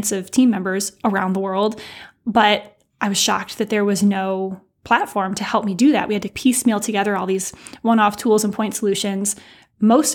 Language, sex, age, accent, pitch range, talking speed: English, female, 10-29, American, 200-230 Hz, 195 wpm